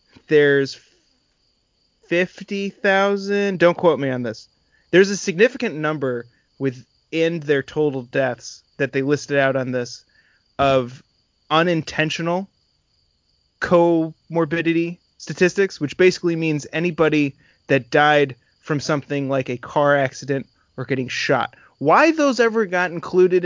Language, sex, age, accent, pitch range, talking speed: English, male, 20-39, American, 135-170 Hz, 115 wpm